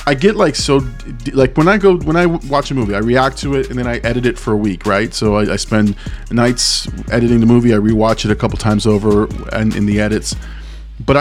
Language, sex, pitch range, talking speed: English, male, 105-130 Hz, 250 wpm